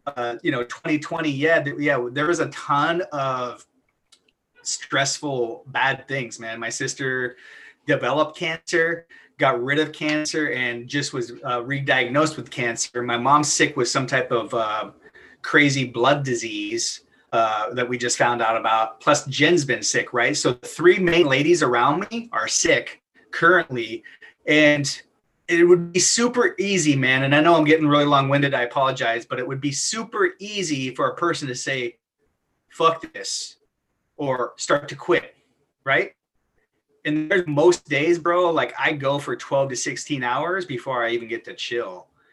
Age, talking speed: 30-49, 165 wpm